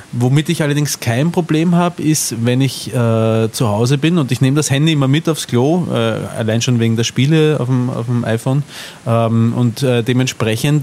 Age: 30-49